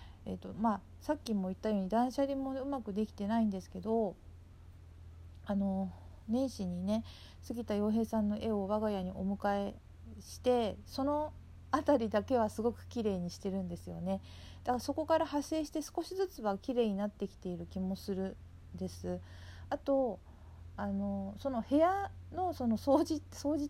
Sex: female